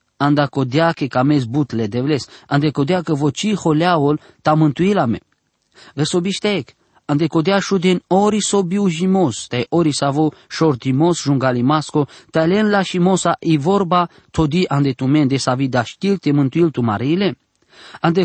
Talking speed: 155 wpm